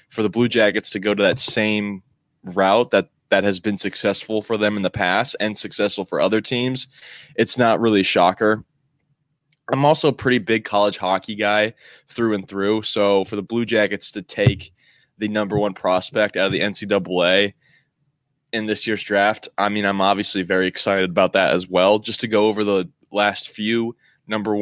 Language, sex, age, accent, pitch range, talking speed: English, male, 20-39, American, 100-110 Hz, 190 wpm